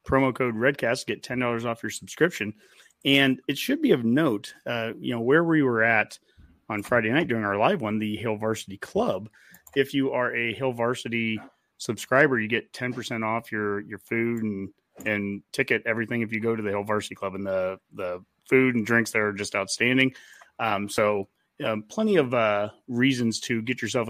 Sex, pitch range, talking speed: male, 110-125 Hz, 195 wpm